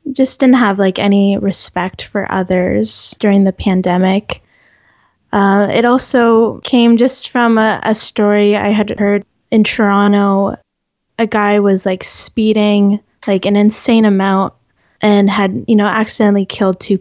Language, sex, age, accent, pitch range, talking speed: English, female, 10-29, American, 195-220 Hz, 145 wpm